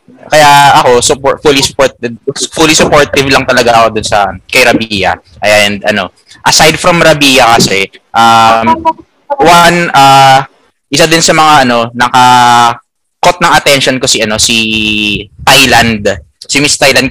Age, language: 20-39, Filipino